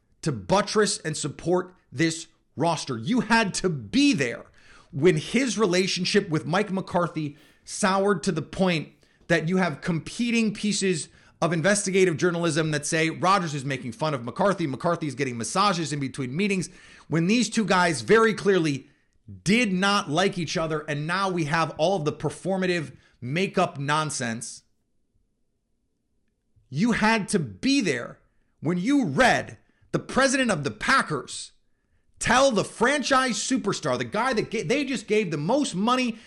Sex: male